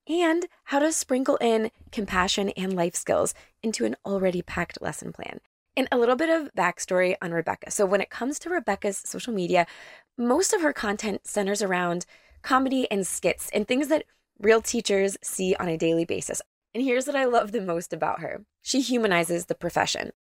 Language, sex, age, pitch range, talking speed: English, female, 20-39, 180-240 Hz, 185 wpm